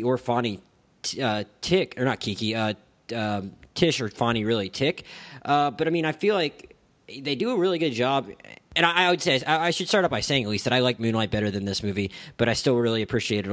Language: English